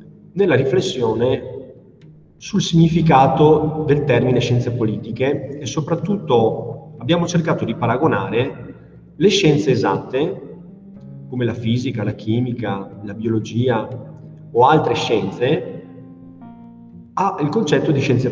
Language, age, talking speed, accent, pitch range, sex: Italian, 40-59, 100 wpm, native, 110-150 Hz, male